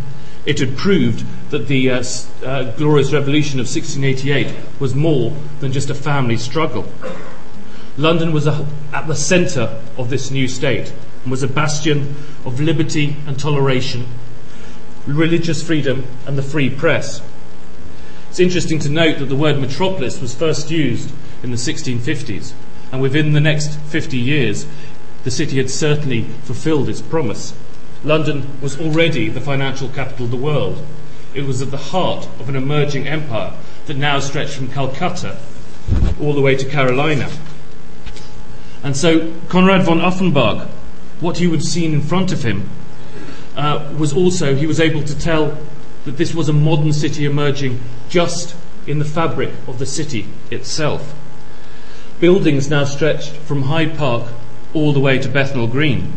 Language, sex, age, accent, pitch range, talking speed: English, male, 40-59, British, 130-155 Hz, 155 wpm